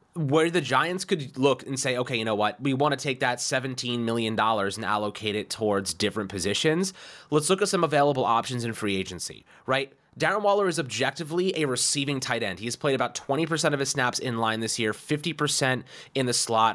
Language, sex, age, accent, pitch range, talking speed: English, male, 30-49, American, 105-135 Hz, 205 wpm